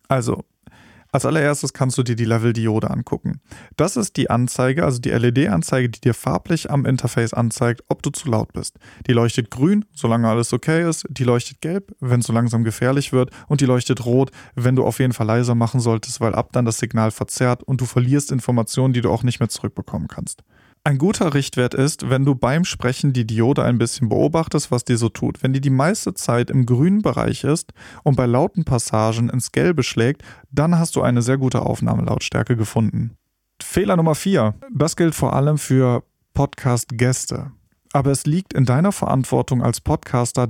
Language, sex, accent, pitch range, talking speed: German, male, German, 120-145 Hz, 195 wpm